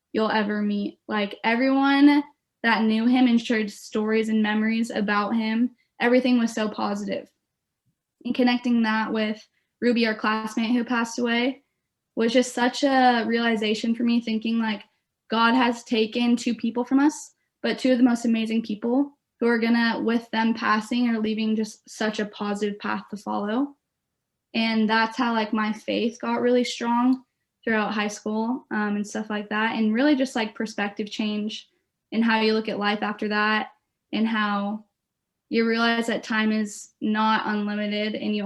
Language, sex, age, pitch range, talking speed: English, female, 10-29, 215-235 Hz, 170 wpm